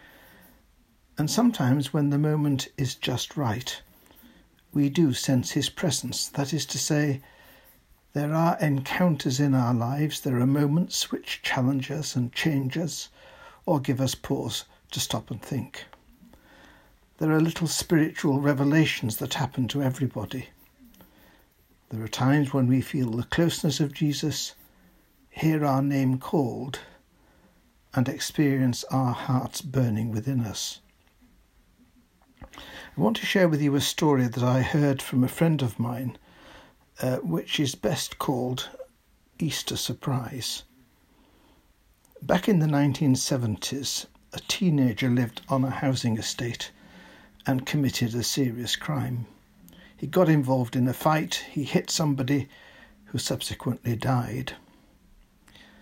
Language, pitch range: English, 125-150 Hz